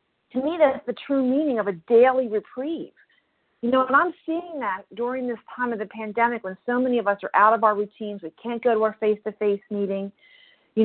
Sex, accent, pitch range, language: female, American, 215-285 Hz, English